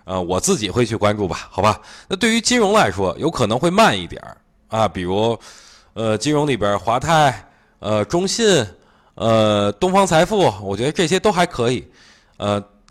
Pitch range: 100-145 Hz